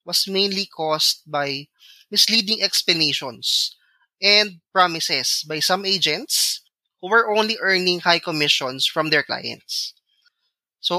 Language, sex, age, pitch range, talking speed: English, male, 20-39, 150-200 Hz, 115 wpm